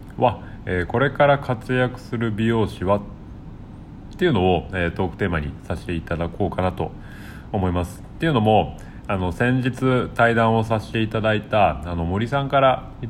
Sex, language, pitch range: male, Japanese, 85-120 Hz